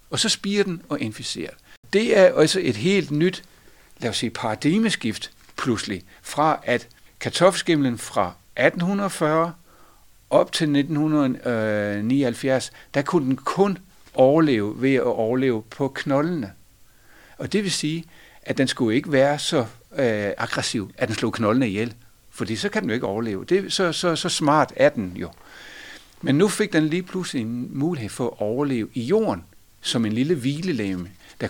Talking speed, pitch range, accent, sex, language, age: 160 wpm, 115-160 Hz, native, male, Danish, 60-79